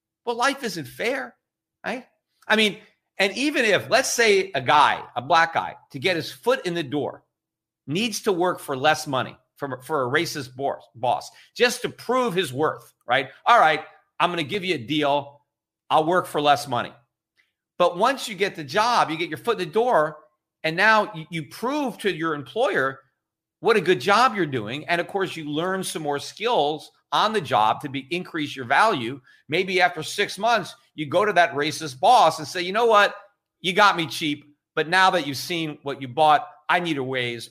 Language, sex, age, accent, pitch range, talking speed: English, male, 40-59, American, 150-215 Hz, 205 wpm